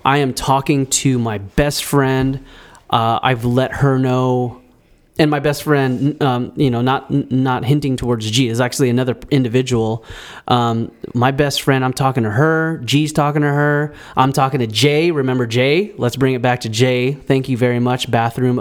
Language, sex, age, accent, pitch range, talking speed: English, male, 30-49, American, 120-140 Hz, 185 wpm